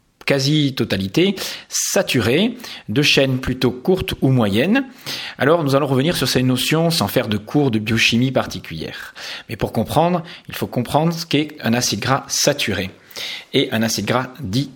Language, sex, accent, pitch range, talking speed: English, male, French, 125-175 Hz, 160 wpm